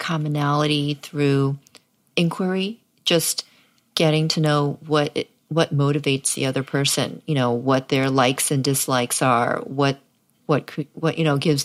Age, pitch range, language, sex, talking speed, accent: 40-59, 145-165 Hz, English, female, 145 wpm, American